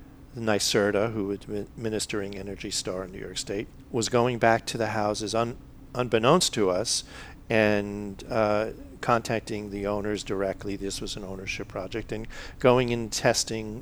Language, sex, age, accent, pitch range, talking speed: English, male, 50-69, American, 100-115 Hz, 150 wpm